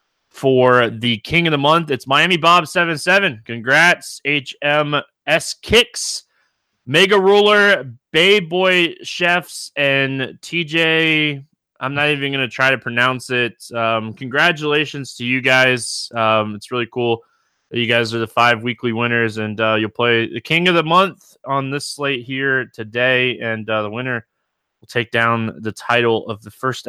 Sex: male